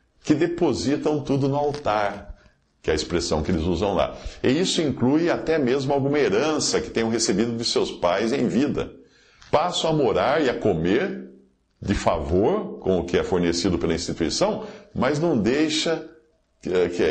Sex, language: male, Portuguese